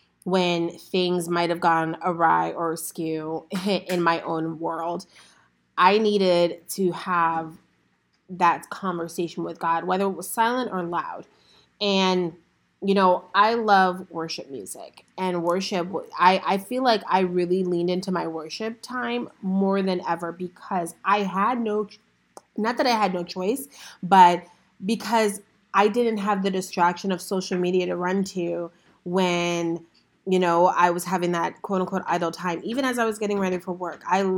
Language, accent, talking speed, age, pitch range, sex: English, American, 160 wpm, 30-49, 175-200 Hz, female